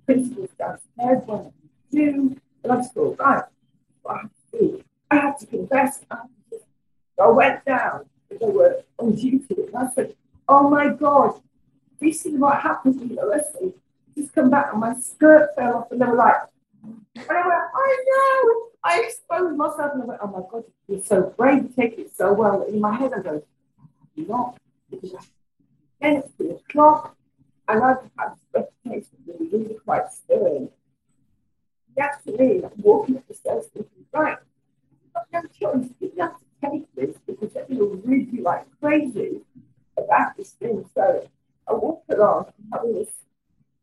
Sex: female